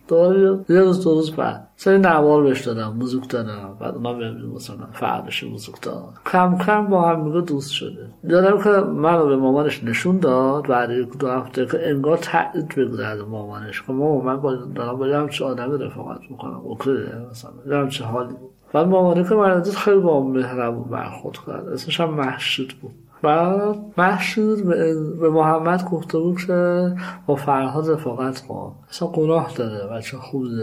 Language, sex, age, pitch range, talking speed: Persian, male, 50-69, 125-160 Hz, 145 wpm